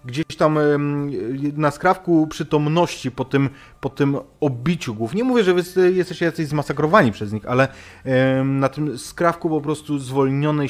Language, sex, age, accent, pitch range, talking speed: Polish, male, 30-49, native, 95-145 Hz, 140 wpm